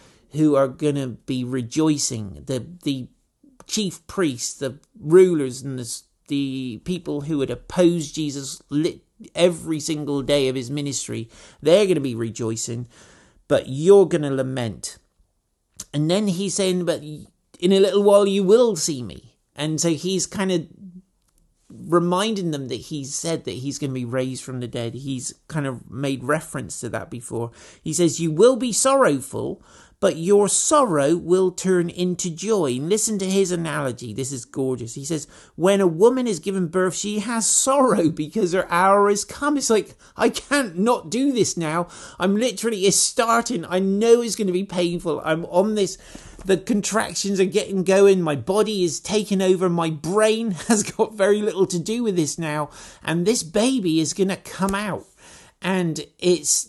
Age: 50-69